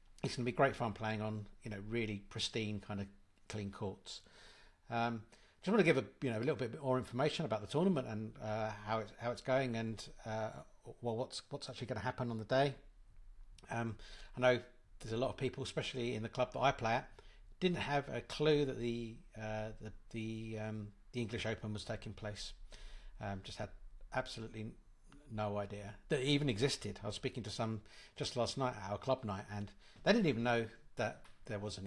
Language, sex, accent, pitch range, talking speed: English, male, British, 110-130 Hz, 215 wpm